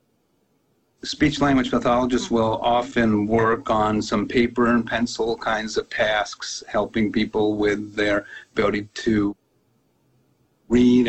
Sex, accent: male, American